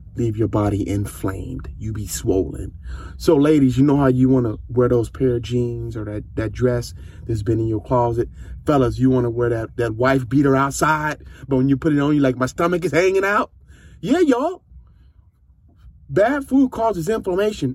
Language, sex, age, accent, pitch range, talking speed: English, male, 30-49, American, 110-145 Hz, 195 wpm